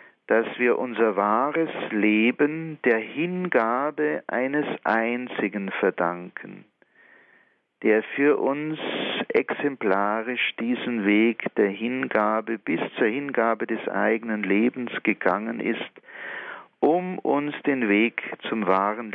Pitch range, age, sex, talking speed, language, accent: 105-140 Hz, 50-69, male, 100 wpm, German, German